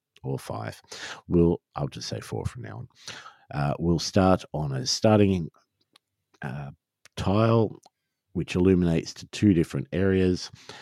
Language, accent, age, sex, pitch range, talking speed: English, Australian, 50-69, male, 70-100 Hz, 135 wpm